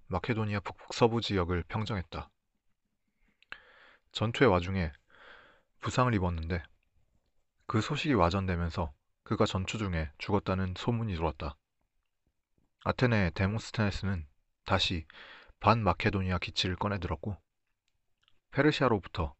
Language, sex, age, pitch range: Korean, male, 40-59, 85-110 Hz